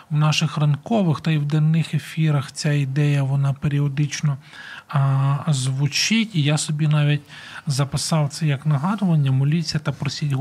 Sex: male